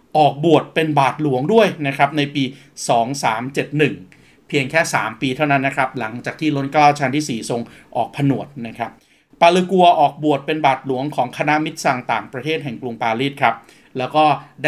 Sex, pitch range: male, 130-155 Hz